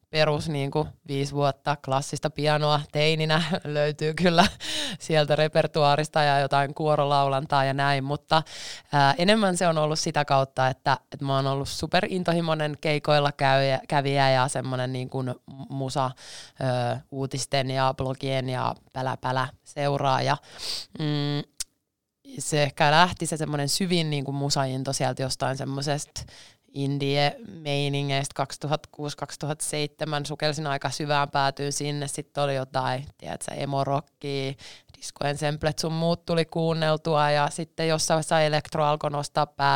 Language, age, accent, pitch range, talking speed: Finnish, 20-39, native, 140-160 Hz, 120 wpm